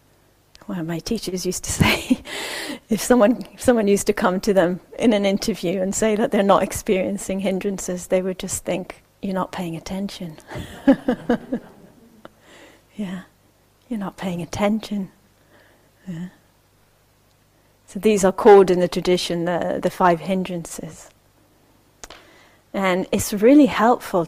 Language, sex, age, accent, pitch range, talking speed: English, female, 30-49, British, 165-220 Hz, 135 wpm